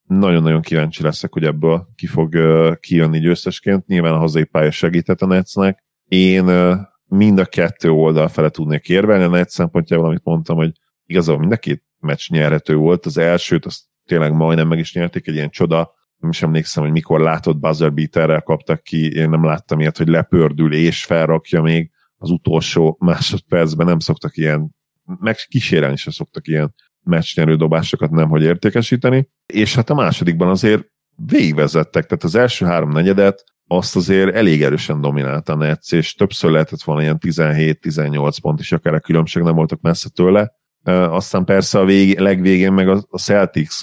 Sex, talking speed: male, 170 wpm